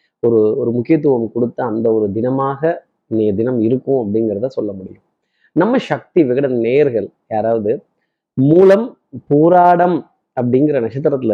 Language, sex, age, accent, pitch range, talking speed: Tamil, male, 30-49, native, 120-160 Hz, 115 wpm